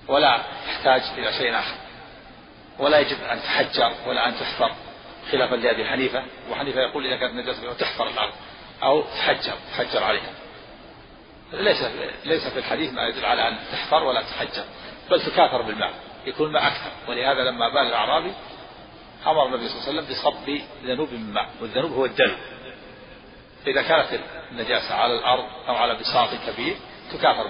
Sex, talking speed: male, 150 wpm